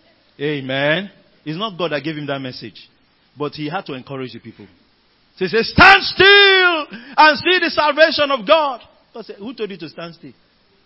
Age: 50-69